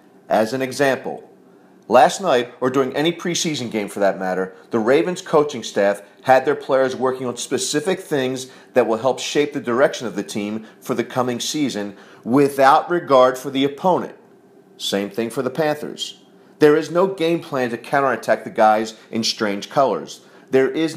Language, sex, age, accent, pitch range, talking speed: English, male, 40-59, American, 110-145 Hz, 175 wpm